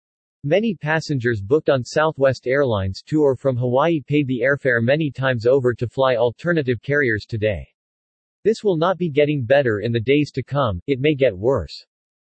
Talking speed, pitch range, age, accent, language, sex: 170 wpm, 120-150 Hz, 40-59, American, English, male